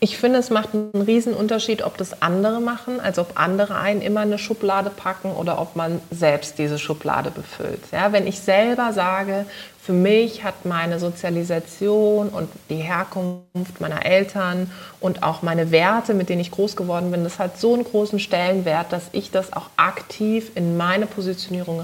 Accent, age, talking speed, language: German, 30-49, 180 wpm, German